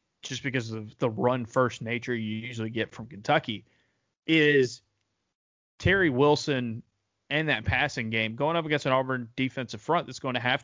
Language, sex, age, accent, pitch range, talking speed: English, male, 30-49, American, 110-140 Hz, 170 wpm